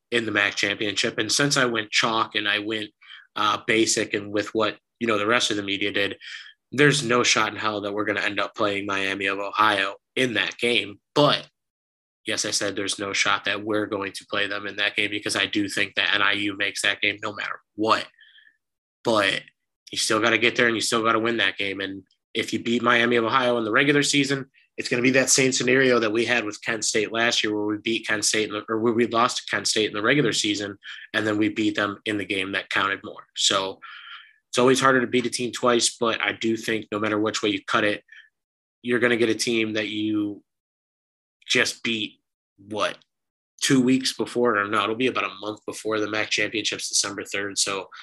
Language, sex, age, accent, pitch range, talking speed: English, male, 20-39, American, 105-120 Hz, 235 wpm